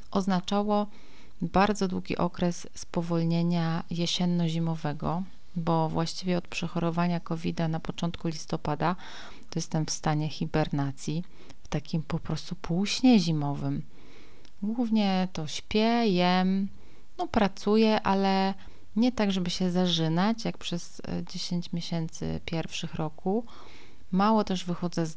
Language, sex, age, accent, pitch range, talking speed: Polish, female, 30-49, native, 165-205 Hz, 110 wpm